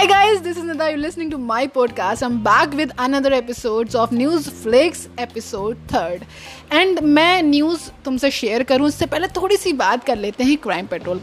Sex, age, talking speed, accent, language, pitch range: female, 20-39, 140 wpm, native, Hindi, 235-335 Hz